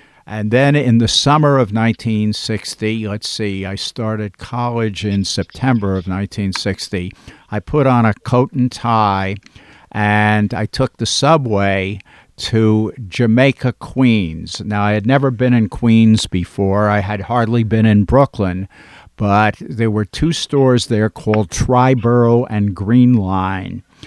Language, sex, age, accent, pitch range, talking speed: English, male, 50-69, American, 100-120 Hz, 140 wpm